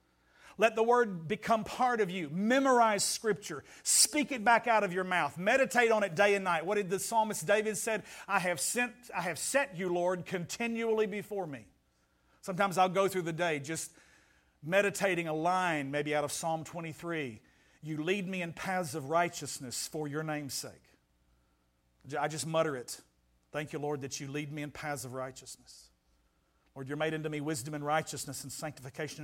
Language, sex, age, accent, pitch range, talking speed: English, male, 50-69, American, 145-190 Hz, 180 wpm